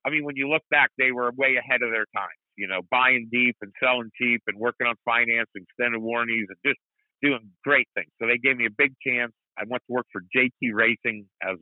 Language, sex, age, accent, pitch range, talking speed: English, male, 50-69, American, 110-130 Hz, 245 wpm